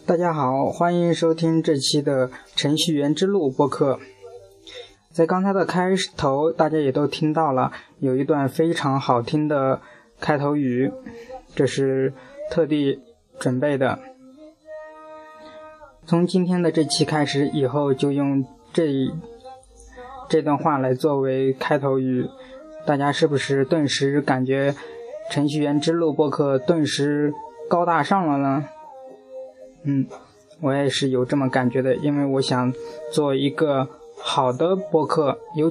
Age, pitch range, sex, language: 20-39, 135-175 Hz, male, Chinese